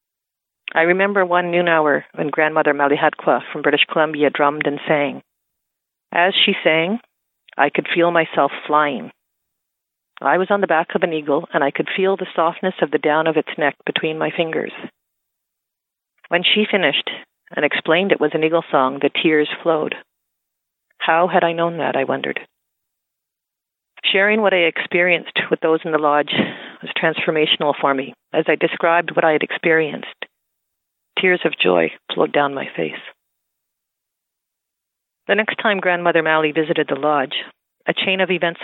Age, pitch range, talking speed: 40-59, 155-180 Hz, 160 wpm